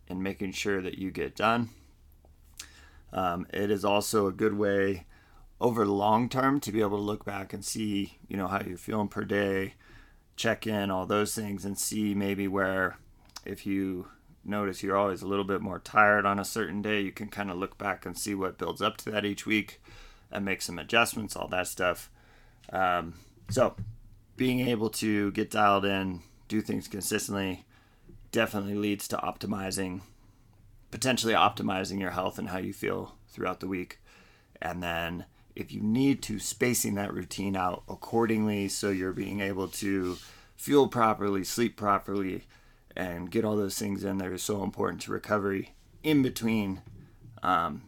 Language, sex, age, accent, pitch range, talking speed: English, male, 30-49, American, 95-110 Hz, 175 wpm